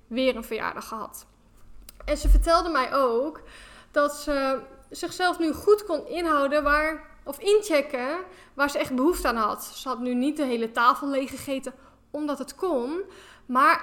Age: 10-29